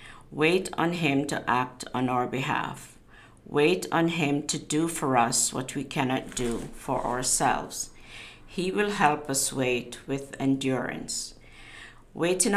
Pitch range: 130-155 Hz